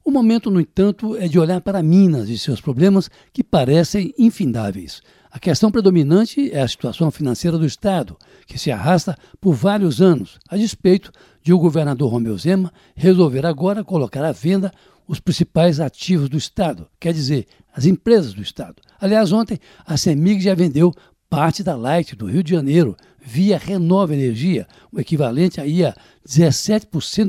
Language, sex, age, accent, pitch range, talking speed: Portuguese, male, 60-79, Brazilian, 145-195 Hz, 165 wpm